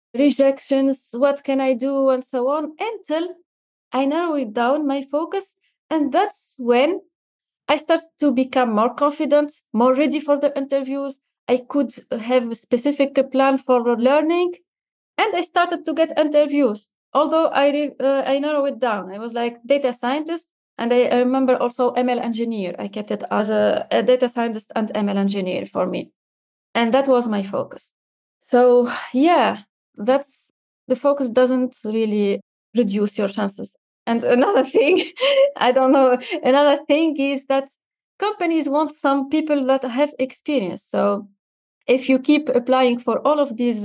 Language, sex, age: English, female, 20-39